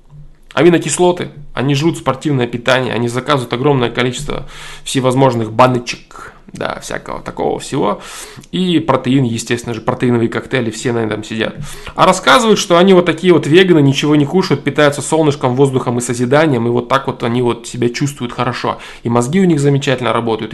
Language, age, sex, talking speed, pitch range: Russian, 20-39, male, 165 wpm, 120-155 Hz